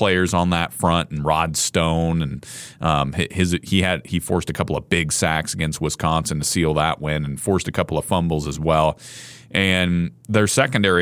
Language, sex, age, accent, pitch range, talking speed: English, male, 30-49, American, 80-105 Hz, 195 wpm